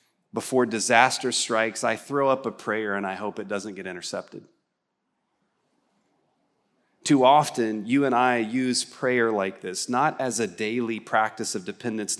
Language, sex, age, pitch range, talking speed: English, male, 30-49, 110-140 Hz, 150 wpm